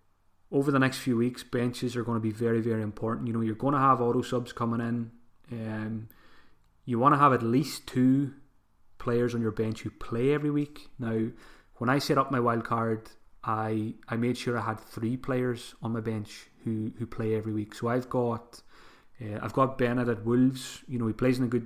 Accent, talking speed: British, 220 wpm